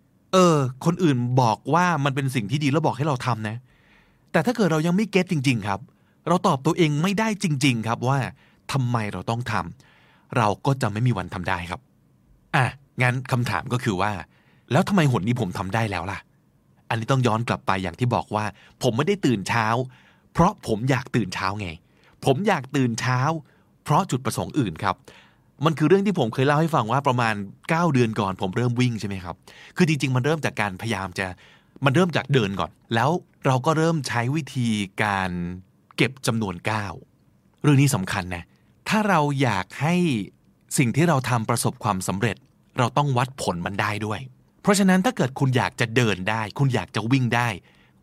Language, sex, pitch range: Thai, male, 105-155 Hz